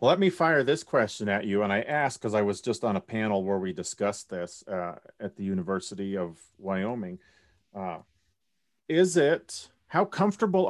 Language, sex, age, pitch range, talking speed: English, male, 40-59, 100-125 Hz, 185 wpm